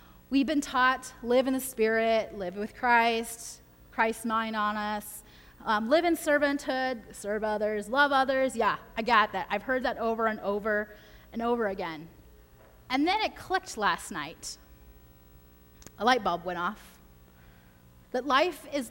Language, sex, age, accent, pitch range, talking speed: English, female, 30-49, American, 200-270 Hz, 155 wpm